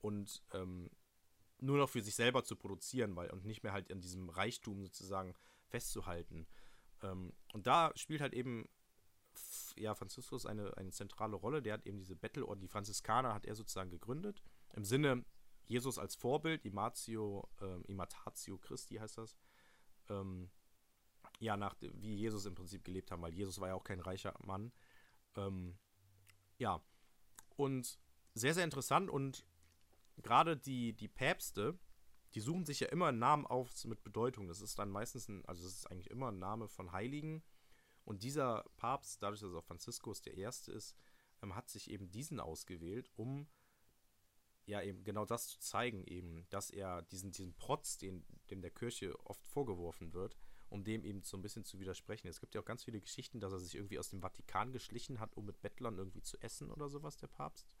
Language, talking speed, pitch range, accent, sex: German, 180 wpm, 95-120 Hz, German, male